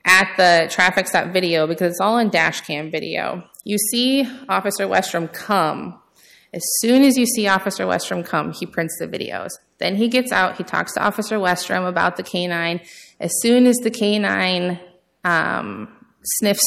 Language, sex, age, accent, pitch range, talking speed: English, female, 20-39, American, 180-225 Hz, 175 wpm